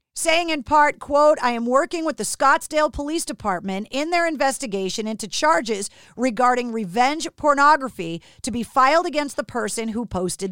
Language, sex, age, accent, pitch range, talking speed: English, female, 40-59, American, 225-295 Hz, 160 wpm